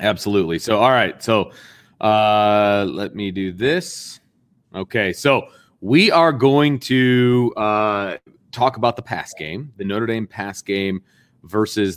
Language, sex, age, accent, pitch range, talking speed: English, male, 30-49, American, 100-120 Hz, 140 wpm